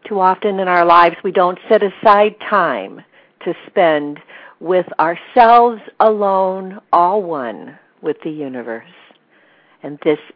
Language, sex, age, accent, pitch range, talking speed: English, female, 60-79, American, 155-215 Hz, 125 wpm